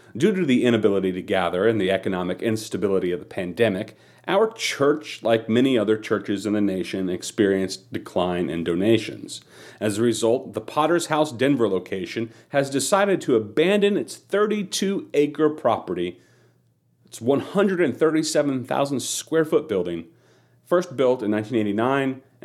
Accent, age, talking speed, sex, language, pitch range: American, 40-59, 130 wpm, male, English, 105-140 Hz